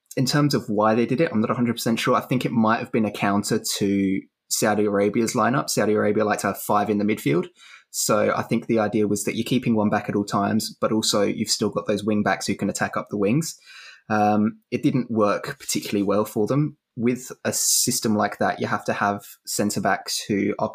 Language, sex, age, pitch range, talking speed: English, male, 20-39, 105-120 Hz, 230 wpm